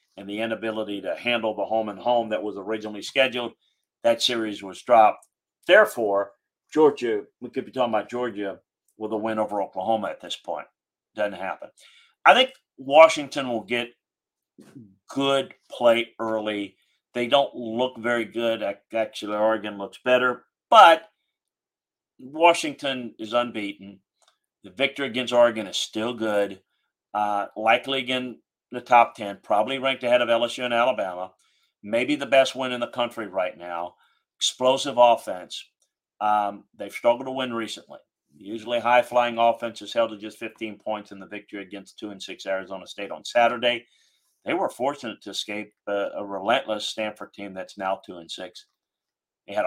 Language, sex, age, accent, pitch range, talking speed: English, male, 40-59, American, 105-125 Hz, 155 wpm